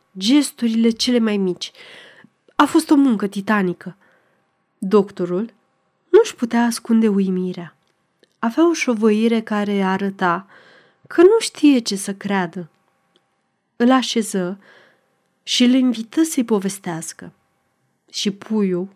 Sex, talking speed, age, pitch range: female, 110 wpm, 30-49, 195-245 Hz